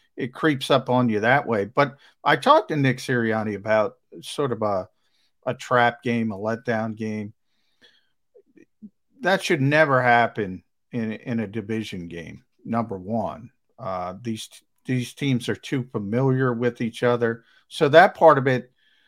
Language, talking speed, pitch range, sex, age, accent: English, 155 wpm, 115-150 Hz, male, 50-69, American